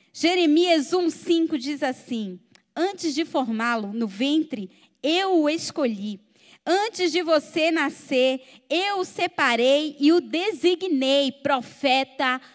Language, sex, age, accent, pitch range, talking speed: Portuguese, female, 20-39, Brazilian, 240-330 Hz, 110 wpm